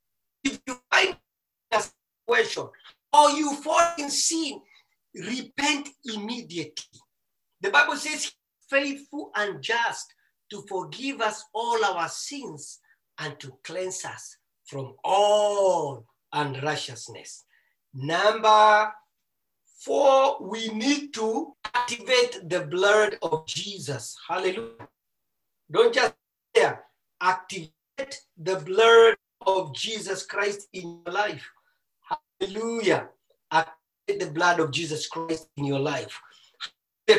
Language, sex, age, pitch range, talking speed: English, male, 50-69, 165-275 Hz, 105 wpm